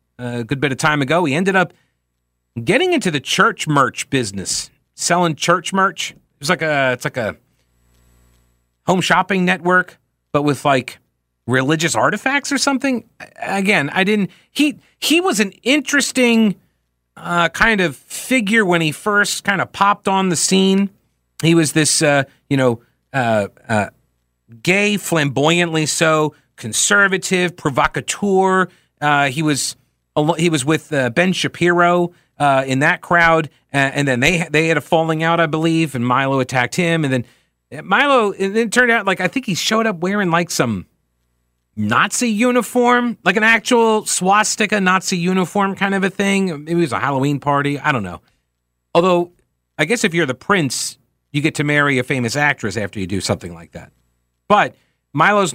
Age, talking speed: 40-59, 165 wpm